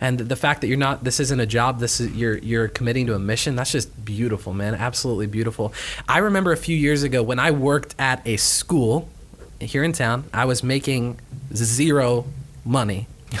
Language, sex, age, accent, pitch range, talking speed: English, male, 20-39, American, 120-165 Hz, 195 wpm